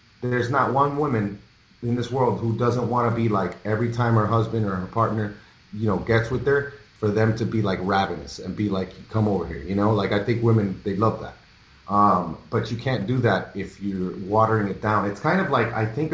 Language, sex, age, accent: English, male, 30-49, American